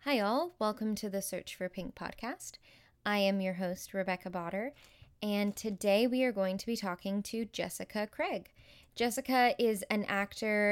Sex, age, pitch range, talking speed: female, 10-29, 190-245 Hz, 170 wpm